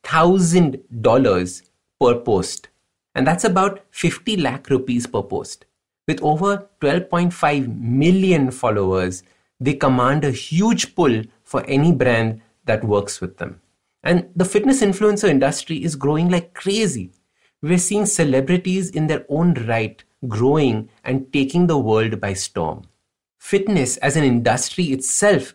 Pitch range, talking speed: 115-170 Hz, 135 wpm